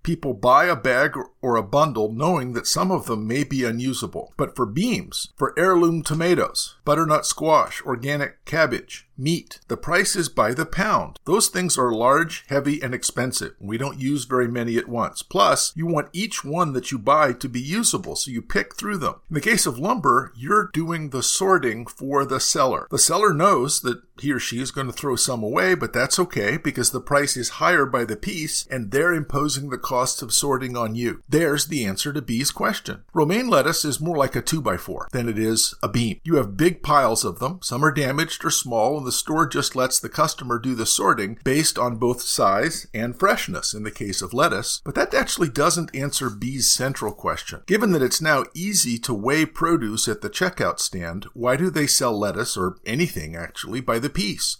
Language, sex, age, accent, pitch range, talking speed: English, male, 50-69, American, 120-155 Hz, 205 wpm